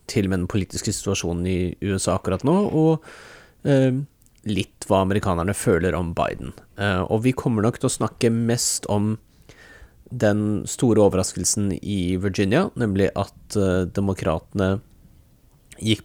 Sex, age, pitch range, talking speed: male, 30-49, 95-115 Hz, 130 wpm